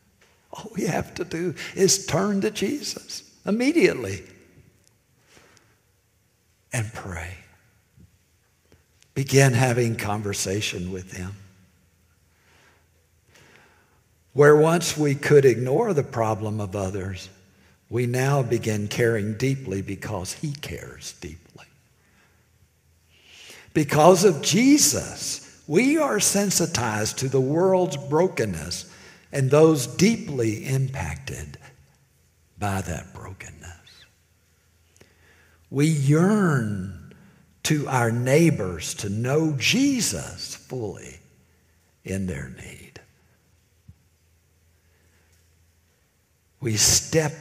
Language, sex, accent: English, male, American